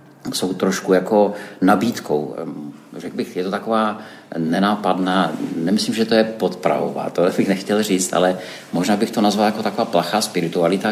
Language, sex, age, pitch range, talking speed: Czech, male, 50-69, 90-110 Hz, 155 wpm